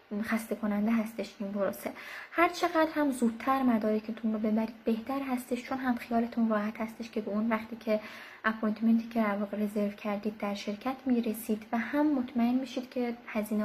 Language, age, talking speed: Persian, 20-39, 165 wpm